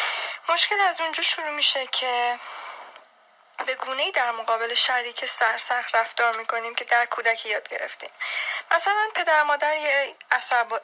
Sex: female